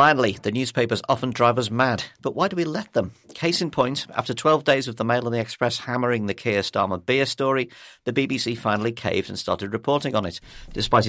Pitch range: 100-125 Hz